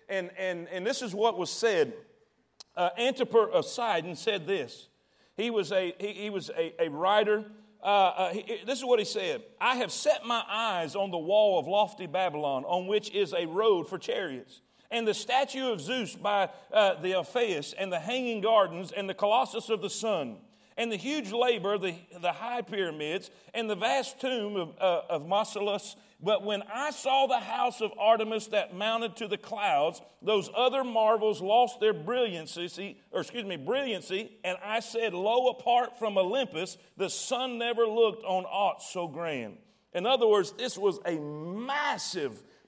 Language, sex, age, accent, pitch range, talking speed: English, male, 40-59, American, 195-245 Hz, 180 wpm